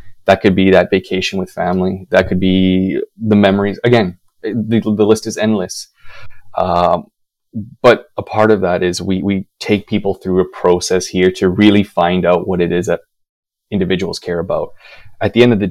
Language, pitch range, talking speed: English, 90-105 Hz, 185 wpm